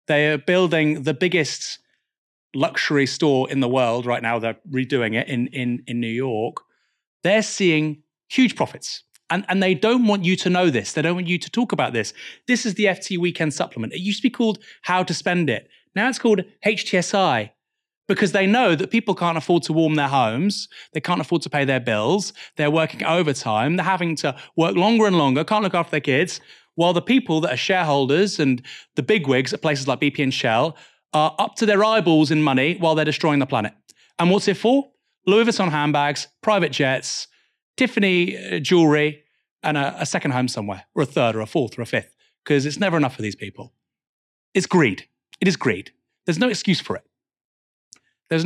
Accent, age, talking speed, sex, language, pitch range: British, 30-49, 200 wpm, male, English, 145-195 Hz